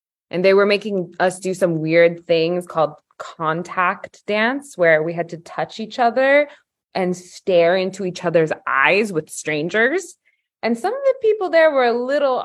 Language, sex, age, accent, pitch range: Chinese, female, 20-39, American, 160-215 Hz